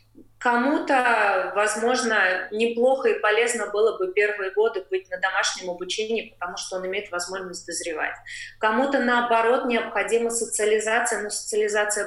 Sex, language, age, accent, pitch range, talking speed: female, Russian, 20-39, native, 205-250 Hz, 125 wpm